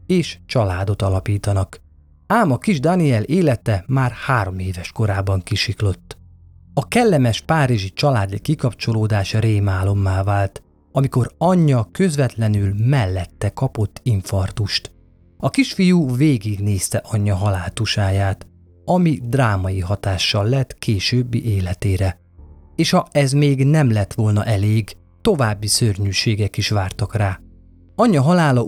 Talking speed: 110 wpm